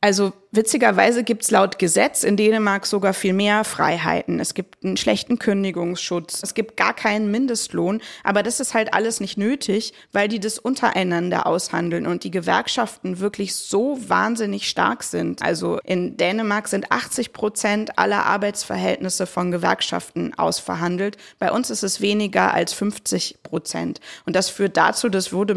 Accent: German